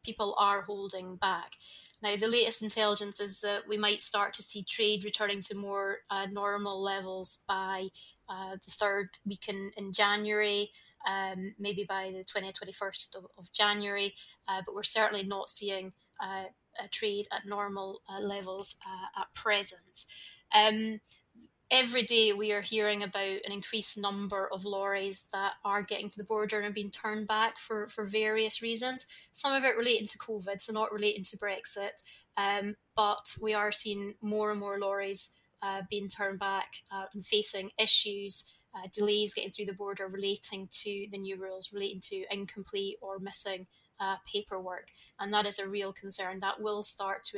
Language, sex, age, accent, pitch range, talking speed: English, female, 20-39, British, 195-210 Hz, 170 wpm